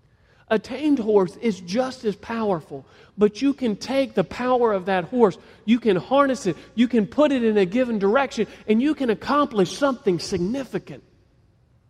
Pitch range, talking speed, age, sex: 160-240 Hz, 170 wpm, 40-59, male